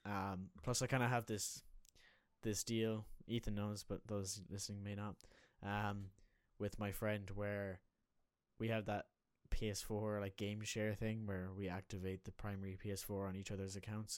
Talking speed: 160 wpm